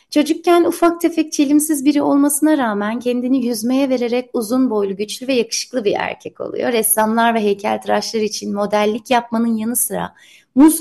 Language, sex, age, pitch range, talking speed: Turkish, female, 30-49, 215-280 Hz, 150 wpm